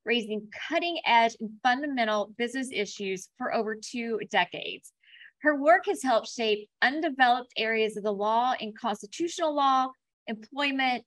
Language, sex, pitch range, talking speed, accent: English, female, 220-290 Hz, 135 wpm, American